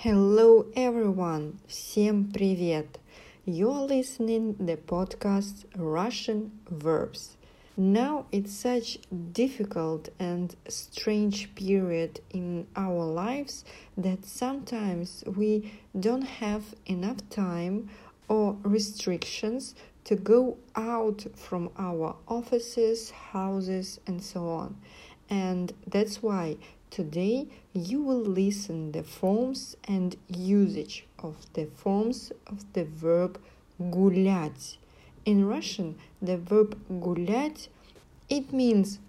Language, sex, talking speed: English, female, 100 wpm